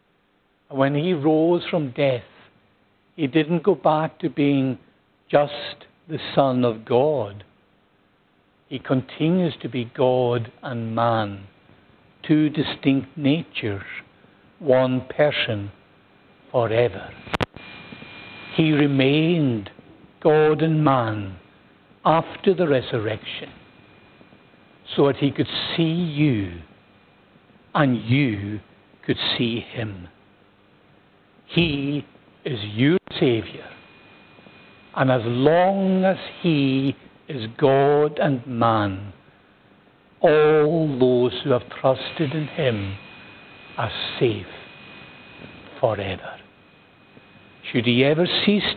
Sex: male